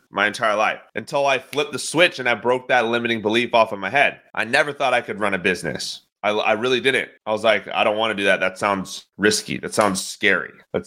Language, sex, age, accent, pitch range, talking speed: English, male, 30-49, American, 105-130 Hz, 255 wpm